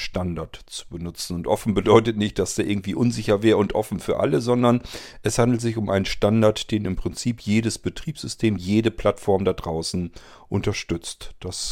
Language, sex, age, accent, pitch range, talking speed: German, male, 40-59, German, 95-115 Hz, 175 wpm